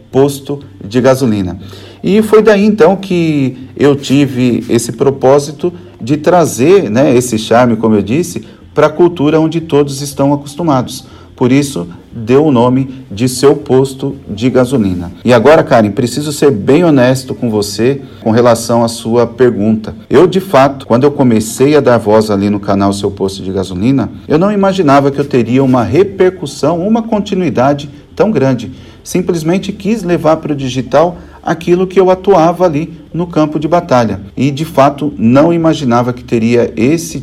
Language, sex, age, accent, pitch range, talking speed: Portuguese, male, 40-59, Brazilian, 115-150 Hz, 165 wpm